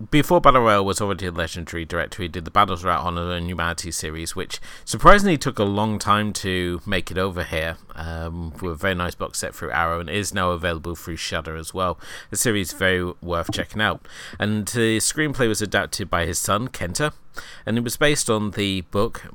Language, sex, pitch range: English, male, 85-110 Hz